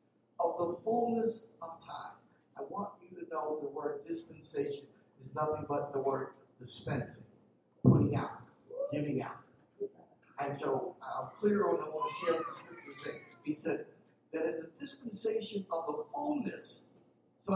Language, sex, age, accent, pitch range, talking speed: English, male, 50-69, American, 170-250 Hz, 155 wpm